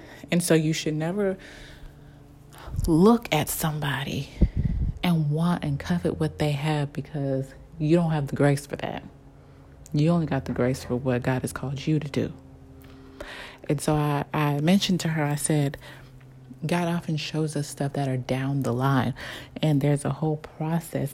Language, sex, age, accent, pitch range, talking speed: English, female, 30-49, American, 140-170 Hz, 170 wpm